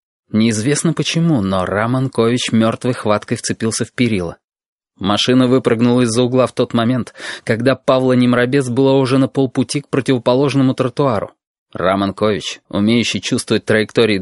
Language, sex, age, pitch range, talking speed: Russian, male, 20-39, 105-135 Hz, 125 wpm